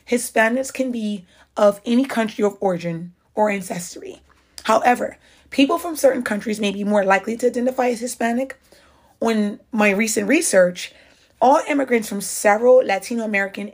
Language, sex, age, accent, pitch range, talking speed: English, female, 30-49, American, 195-250 Hz, 145 wpm